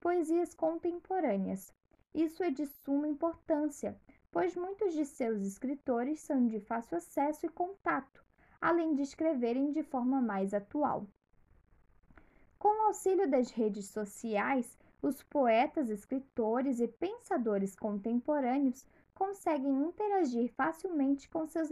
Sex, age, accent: female, 10-29, Brazilian